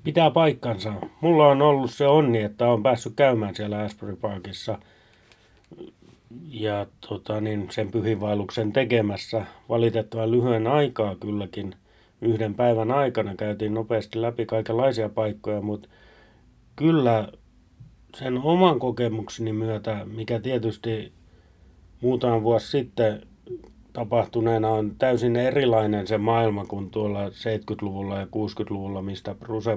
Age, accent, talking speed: 30-49, native, 115 wpm